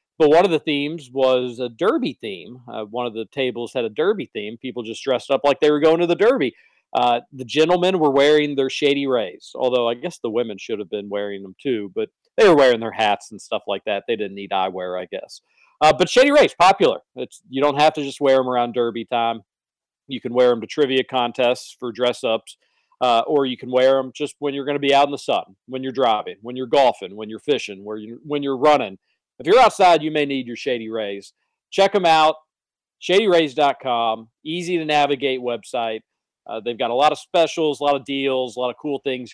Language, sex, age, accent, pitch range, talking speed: English, male, 40-59, American, 120-155 Hz, 230 wpm